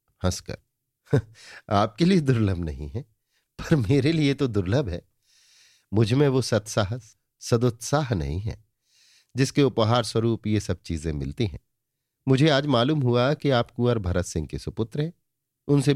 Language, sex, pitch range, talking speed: Hindi, male, 95-130 Hz, 150 wpm